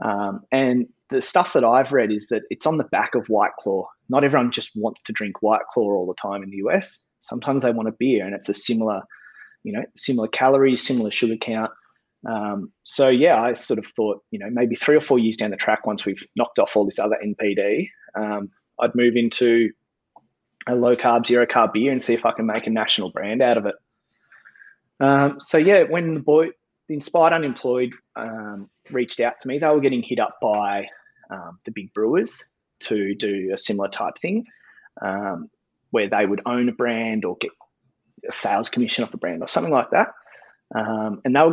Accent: Australian